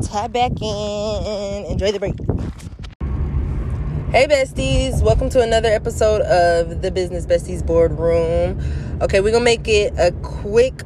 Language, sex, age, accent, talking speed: English, female, 20-39, American, 135 wpm